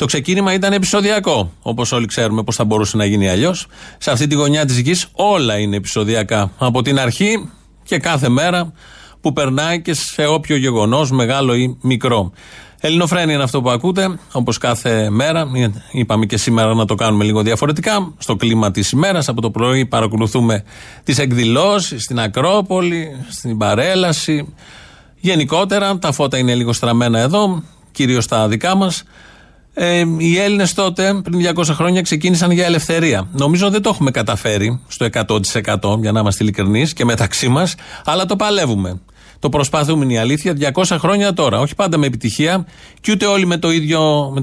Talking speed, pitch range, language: 165 wpm, 115-170 Hz, Greek